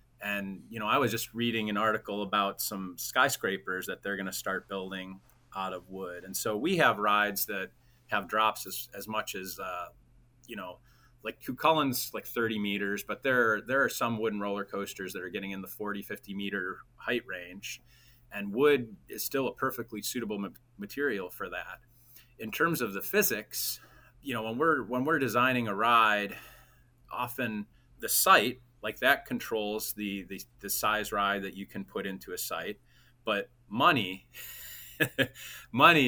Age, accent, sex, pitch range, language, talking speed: 30-49, American, male, 100-120 Hz, English, 175 wpm